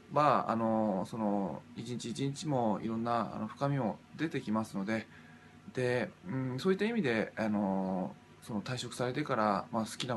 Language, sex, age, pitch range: Japanese, male, 20-39, 110-150 Hz